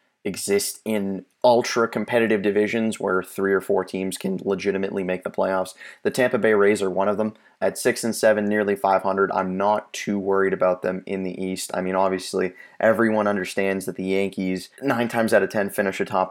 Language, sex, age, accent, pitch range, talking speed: English, male, 20-39, American, 95-110 Hz, 195 wpm